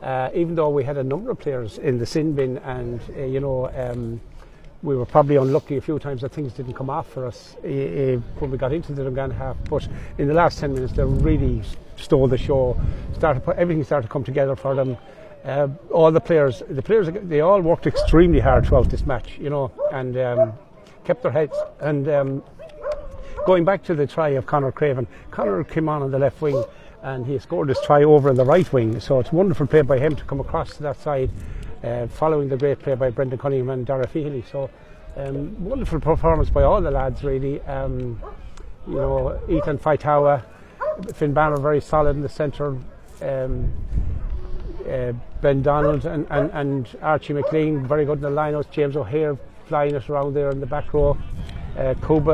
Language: English